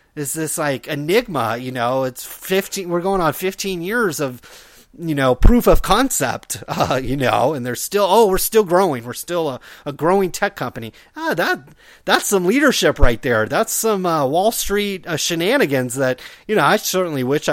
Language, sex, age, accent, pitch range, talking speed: English, male, 30-49, American, 130-190 Hz, 190 wpm